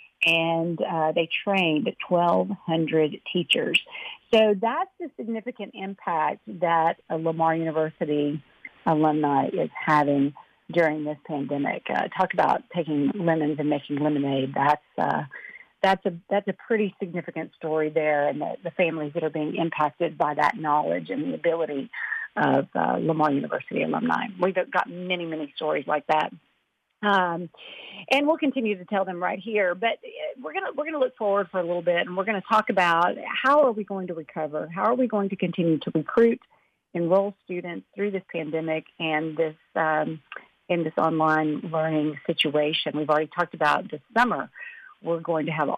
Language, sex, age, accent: English, female, 50-69, American